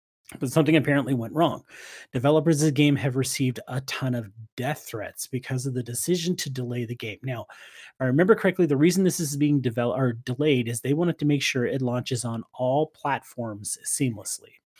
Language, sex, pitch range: English, male, 125-165 Hz